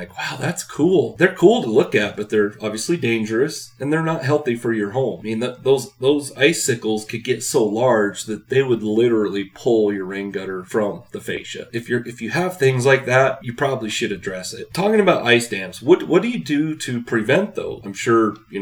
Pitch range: 105-125 Hz